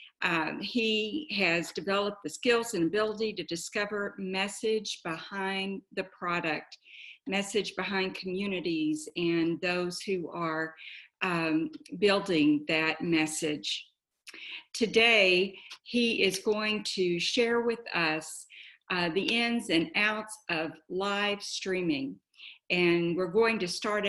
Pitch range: 170-220 Hz